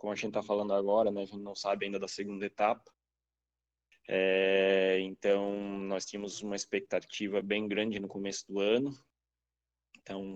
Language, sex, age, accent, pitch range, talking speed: Portuguese, male, 20-39, Brazilian, 100-105 Hz, 160 wpm